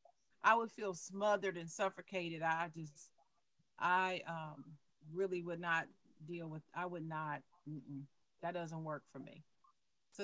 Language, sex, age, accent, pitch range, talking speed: English, female, 40-59, American, 175-270 Hz, 140 wpm